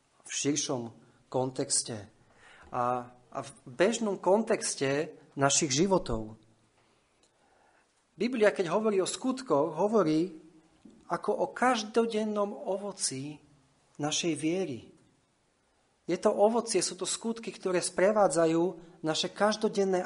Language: Slovak